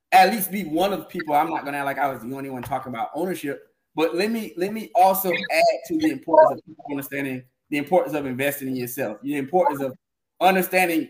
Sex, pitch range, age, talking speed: male, 145-185 Hz, 20-39, 225 wpm